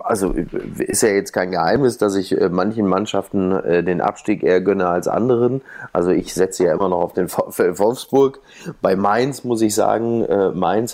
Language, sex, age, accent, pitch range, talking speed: German, male, 30-49, German, 100-130 Hz, 170 wpm